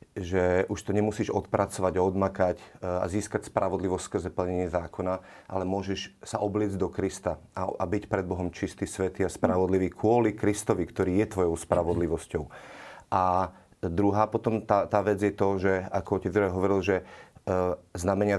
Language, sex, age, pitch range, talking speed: Slovak, male, 30-49, 95-105 Hz, 155 wpm